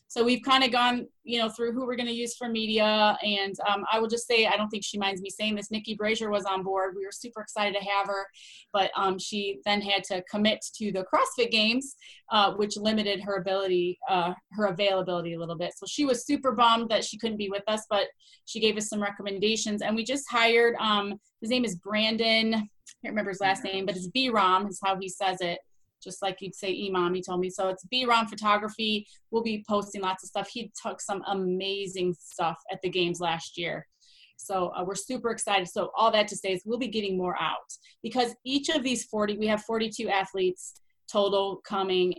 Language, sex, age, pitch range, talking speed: English, female, 20-39, 185-225 Hz, 225 wpm